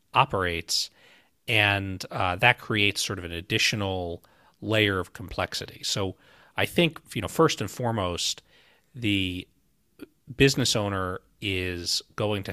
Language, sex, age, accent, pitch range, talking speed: English, male, 40-59, American, 90-110 Hz, 125 wpm